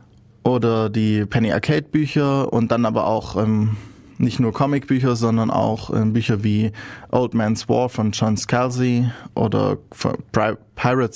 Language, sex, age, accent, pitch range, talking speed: German, male, 20-39, German, 110-130 Hz, 145 wpm